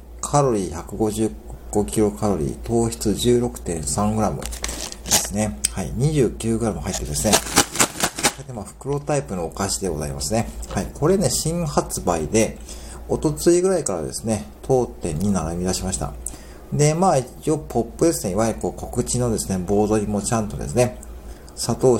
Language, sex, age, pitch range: Japanese, male, 50-69, 80-120 Hz